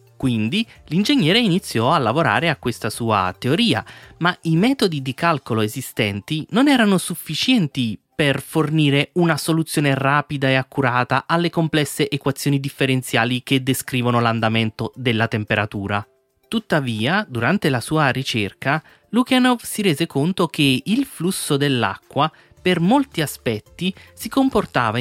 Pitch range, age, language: 125-185 Hz, 30-49, Italian